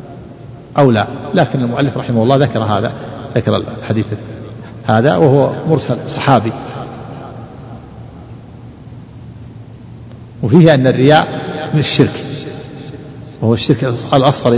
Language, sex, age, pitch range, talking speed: Arabic, male, 50-69, 120-140 Hz, 90 wpm